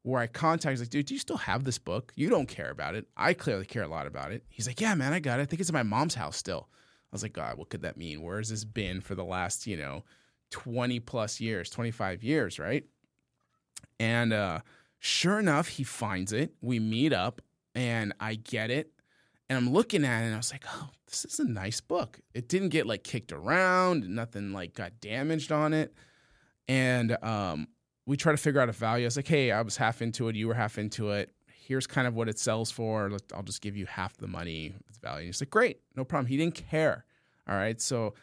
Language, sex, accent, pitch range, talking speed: English, male, American, 105-145 Hz, 235 wpm